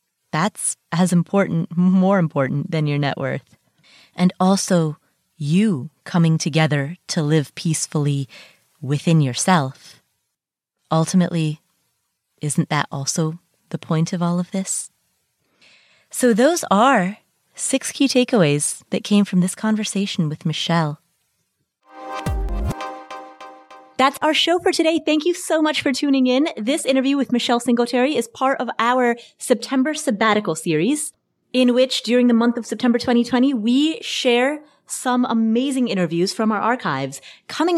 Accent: American